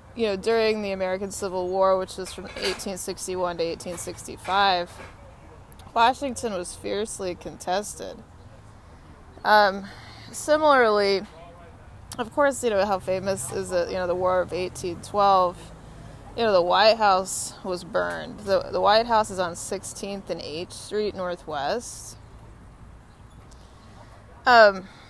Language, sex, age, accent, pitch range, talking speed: English, female, 20-39, American, 160-210 Hz, 125 wpm